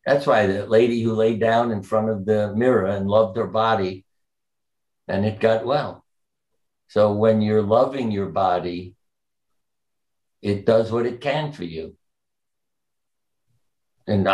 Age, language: 60-79, English